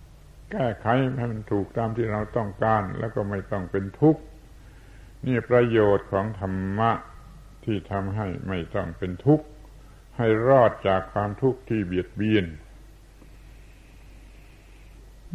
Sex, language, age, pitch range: male, Thai, 70-89, 95-120 Hz